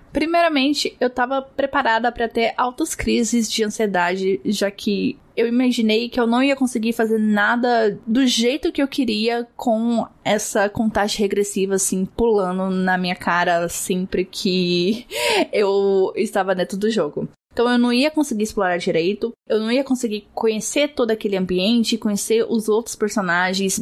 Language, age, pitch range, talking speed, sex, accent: Portuguese, 10-29, 205-250 Hz, 155 wpm, female, Brazilian